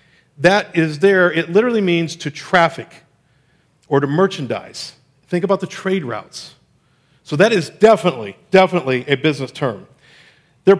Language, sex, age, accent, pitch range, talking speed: English, male, 50-69, American, 135-175 Hz, 140 wpm